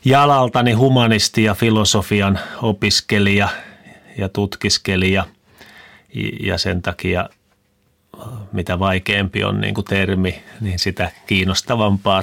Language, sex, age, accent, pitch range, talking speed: Finnish, male, 30-49, native, 95-105 Hz, 95 wpm